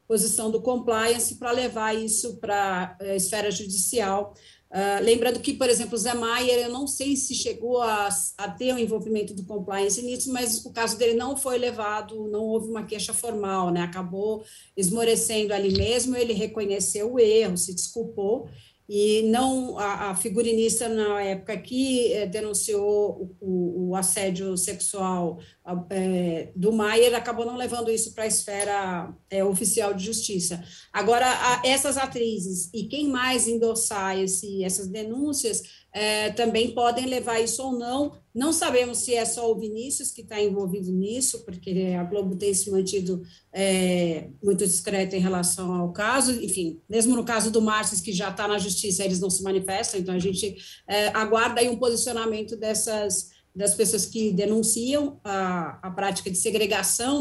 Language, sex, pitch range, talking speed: Portuguese, female, 190-230 Hz, 170 wpm